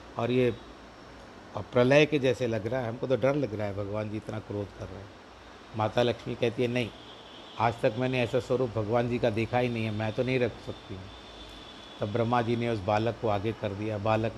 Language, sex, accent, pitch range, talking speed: Hindi, male, native, 110-125 Hz, 230 wpm